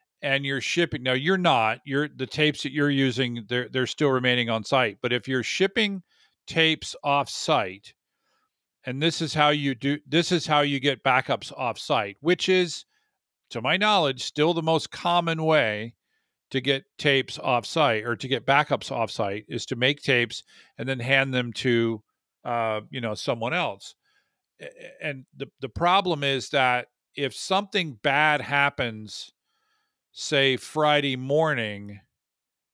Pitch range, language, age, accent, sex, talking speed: 120-150 Hz, English, 50-69, American, male, 160 wpm